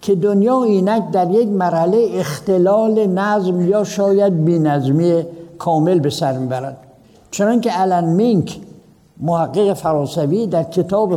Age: 60-79